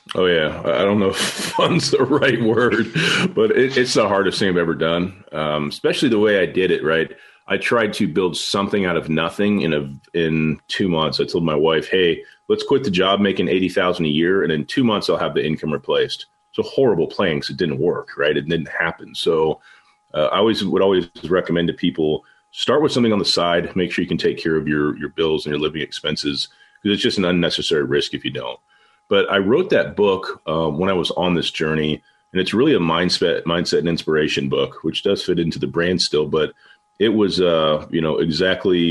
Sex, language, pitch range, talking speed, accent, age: male, English, 80-130 Hz, 230 wpm, American, 30-49